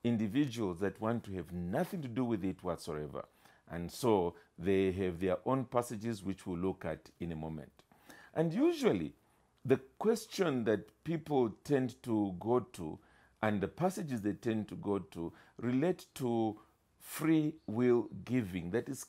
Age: 50-69